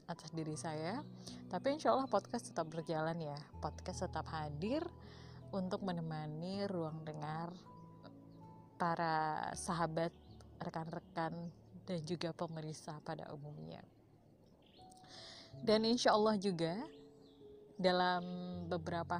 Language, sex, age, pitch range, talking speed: Indonesian, female, 20-39, 155-180 Hz, 95 wpm